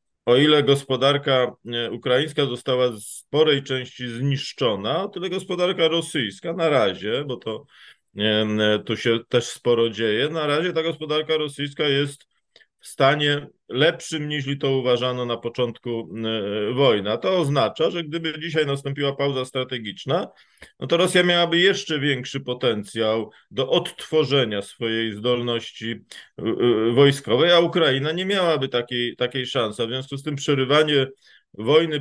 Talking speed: 135 wpm